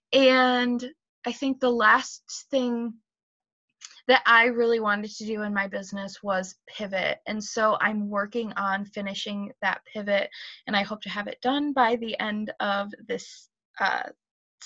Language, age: English, 20-39